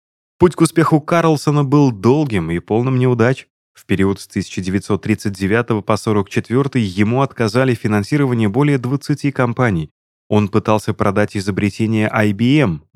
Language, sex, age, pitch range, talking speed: Russian, male, 20-39, 95-130 Hz, 120 wpm